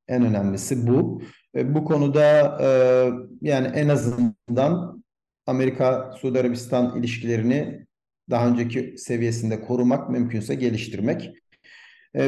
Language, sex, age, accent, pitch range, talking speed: Turkish, male, 50-69, native, 110-130 Hz, 100 wpm